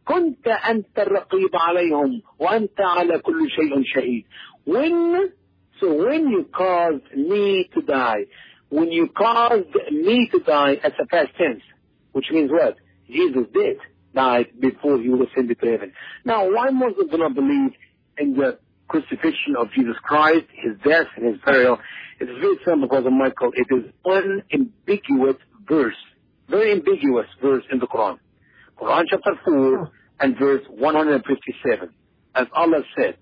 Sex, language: male, English